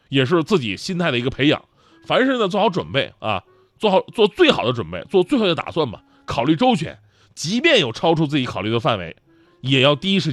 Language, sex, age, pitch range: Chinese, male, 30-49, 125-210 Hz